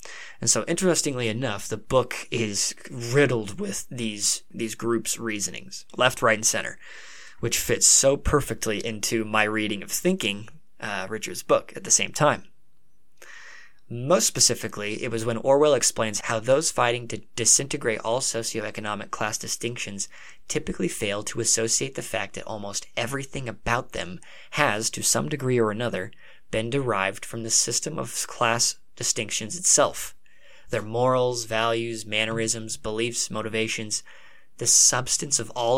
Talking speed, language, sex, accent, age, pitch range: 145 wpm, English, male, American, 20-39, 105-125 Hz